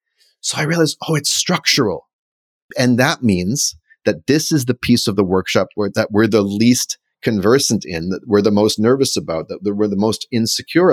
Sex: male